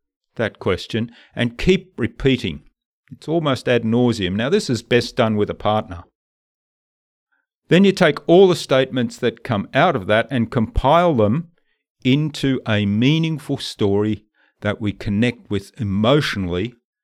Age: 50-69